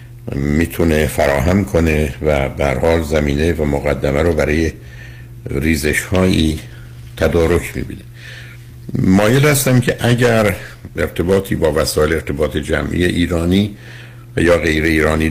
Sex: male